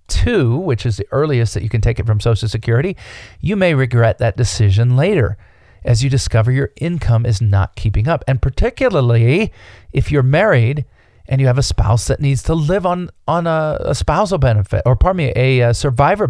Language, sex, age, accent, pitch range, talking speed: English, male, 40-59, American, 105-140 Hz, 200 wpm